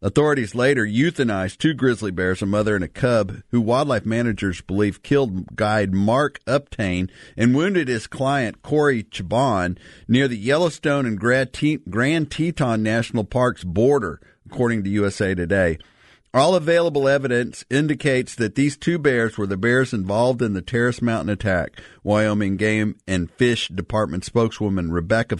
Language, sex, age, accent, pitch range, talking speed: English, male, 50-69, American, 100-130 Hz, 145 wpm